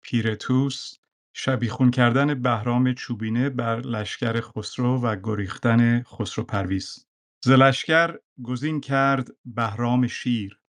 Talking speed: 95 wpm